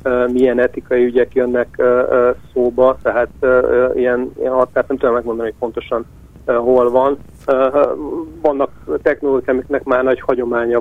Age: 50-69